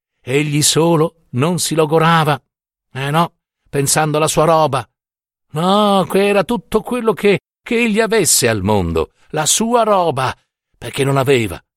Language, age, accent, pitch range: Italian, 60-79, native, 115-165 Hz